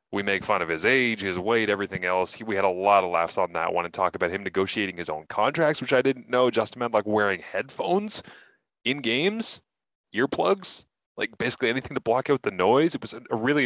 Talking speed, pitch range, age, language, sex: 230 wpm, 95-125 Hz, 30-49, English, male